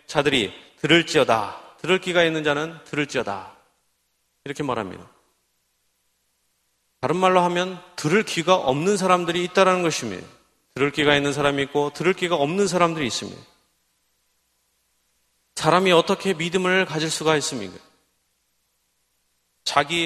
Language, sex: Korean, male